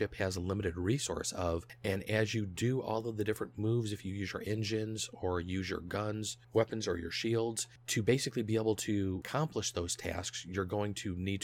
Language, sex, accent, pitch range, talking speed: English, male, American, 95-115 Hz, 205 wpm